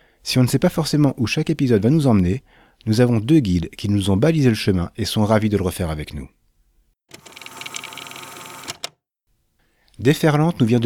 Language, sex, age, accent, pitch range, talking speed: French, male, 40-59, French, 90-125 Hz, 180 wpm